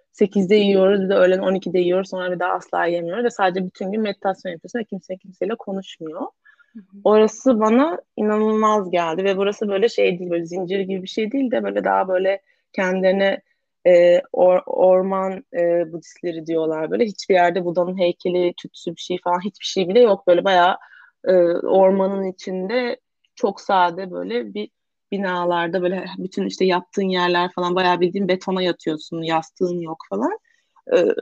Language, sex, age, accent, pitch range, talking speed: Turkish, female, 30-49, native, 185-230 Hz, 160 wpm